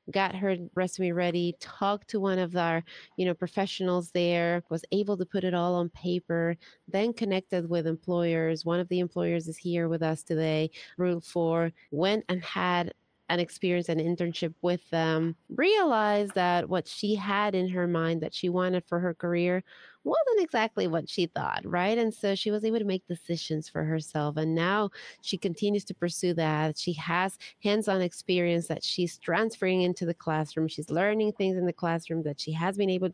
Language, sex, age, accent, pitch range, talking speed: English, female, 30-49, American, 160-190 Hz, 185 wpm